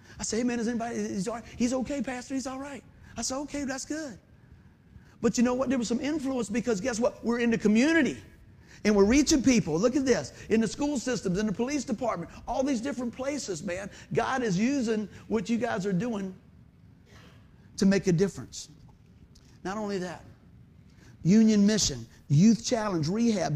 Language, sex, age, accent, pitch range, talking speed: English, male, 50-69, American, 165-235 Hz, 190 wpm